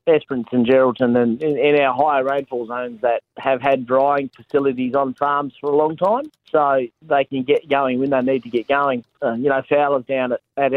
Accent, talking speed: Australian, 210 wpm